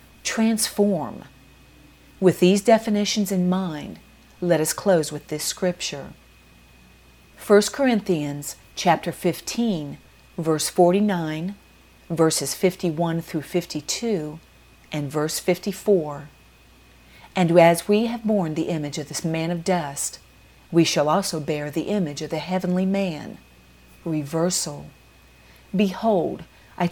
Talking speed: 110 wpm